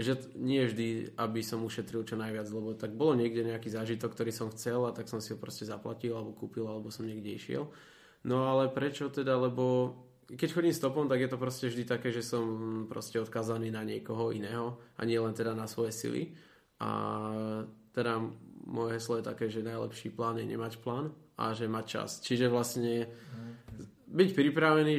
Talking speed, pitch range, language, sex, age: 190 wpm, 115-120 Hz, Slovak, male, 20-39